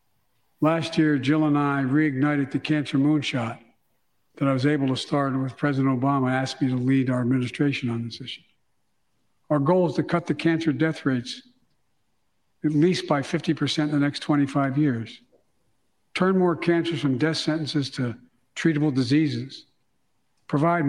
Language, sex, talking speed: English, male, 160 wpm